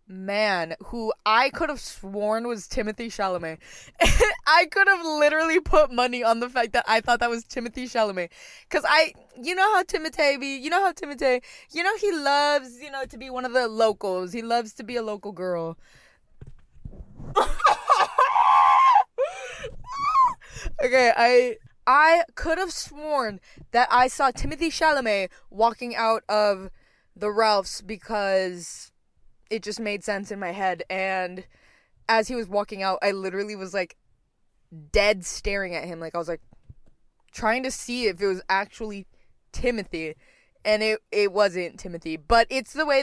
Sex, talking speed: female, 160 wpm